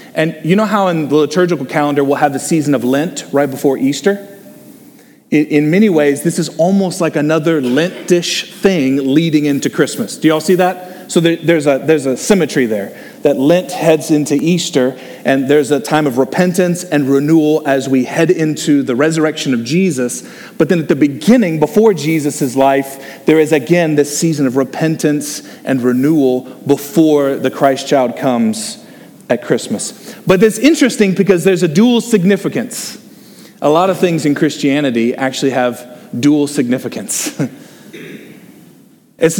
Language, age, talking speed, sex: English, 40-59, 160 wpm, male